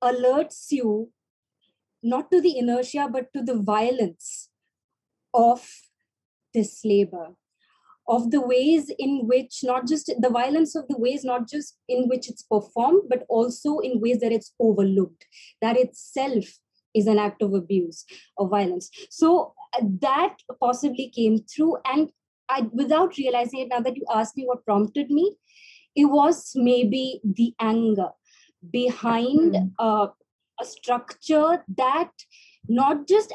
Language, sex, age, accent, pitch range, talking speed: English, female, 20-39, Indian, 220-275 Hz, 135 wpm